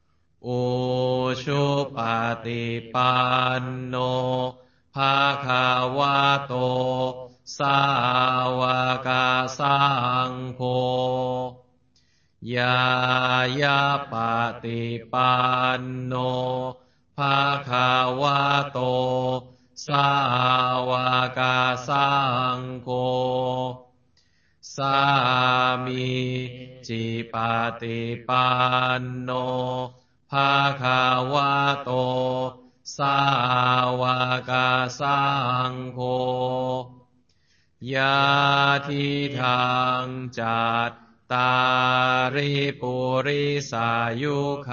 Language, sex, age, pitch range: Chinese, male, 20-39, 125-130 Hz